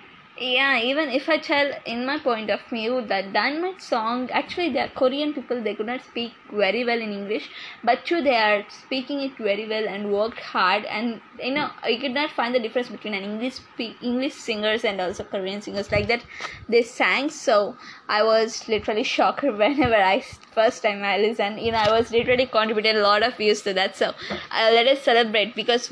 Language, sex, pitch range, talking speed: English, female, 215-270 Hz, 200 wpm